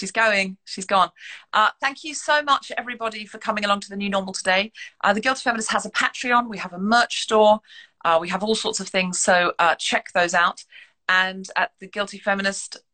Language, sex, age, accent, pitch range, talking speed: English, female, 40-59, British, 160-215 Hz, 220 wpm